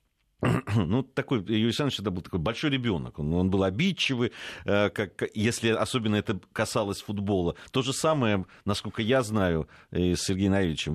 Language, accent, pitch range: Russian, native, 80-110 Hz